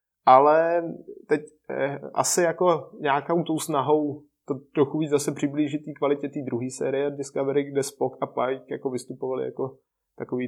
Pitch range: 125-145 Hz